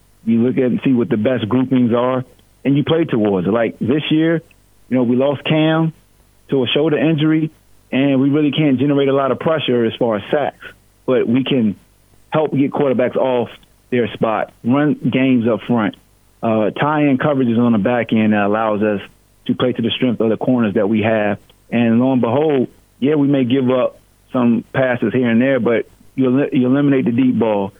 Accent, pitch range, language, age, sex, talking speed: American, 115-140 Hz, English, 30-49, male, 210 wpm